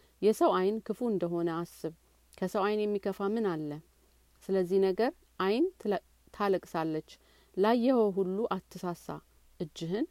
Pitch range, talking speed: 170-210 Hz, 105 wpm